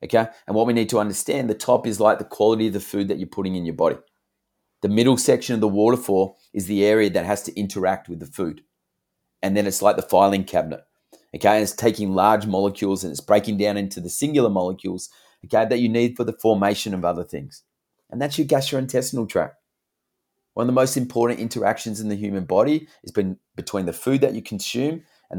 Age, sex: 30-49, male